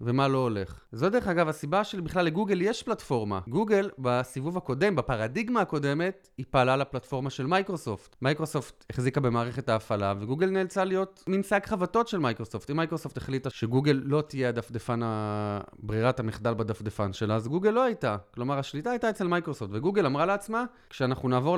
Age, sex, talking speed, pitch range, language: 30-49, male, 160 wpm, 120-165 Hz, Hebrew